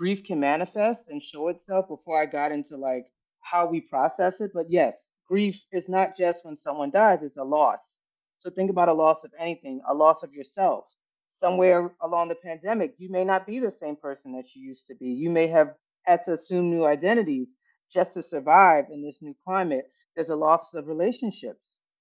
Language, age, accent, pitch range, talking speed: English, 40-59, American, 145-190 Hz, 200 wpm